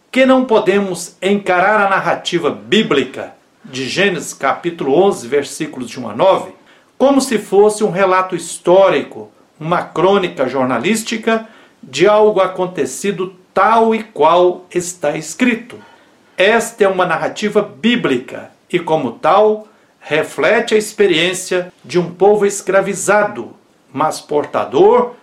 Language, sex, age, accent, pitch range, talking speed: Portuguese, male, 60-79, Brazilian, 185-225 Hz, 120 wpm